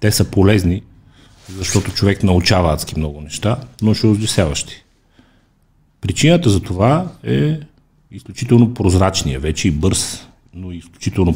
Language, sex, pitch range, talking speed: Bulgarian, male, 80-110 Hz, 120 wpm